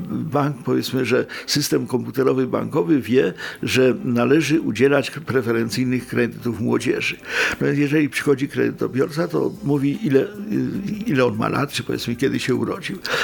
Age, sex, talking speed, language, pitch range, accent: 50-69, male, 125 wpm, Polish, 125-150 Hz, native